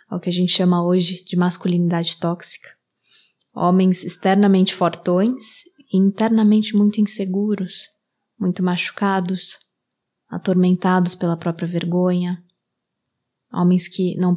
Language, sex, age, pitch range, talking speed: Portuguese, female, 20-39, 175-205 Hz, 105 wpm